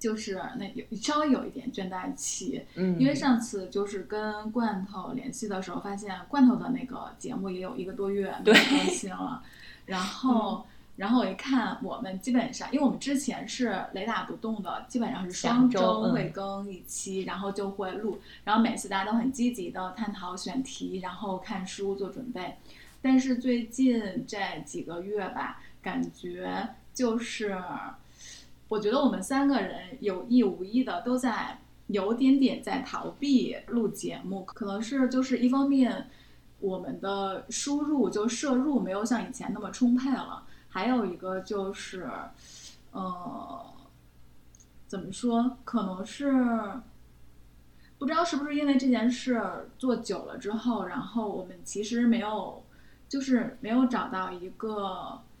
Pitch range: 195-255 Hz